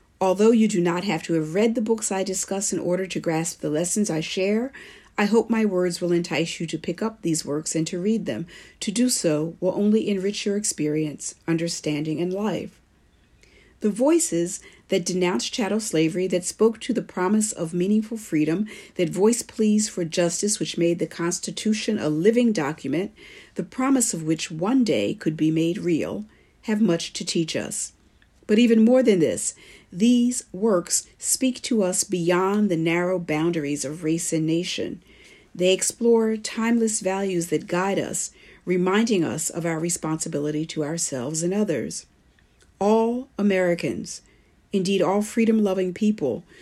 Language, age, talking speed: English, 50-69, 165 wpm